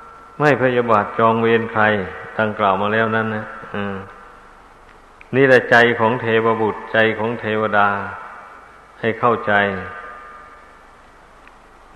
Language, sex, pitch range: Thai, male, 110-130 Hz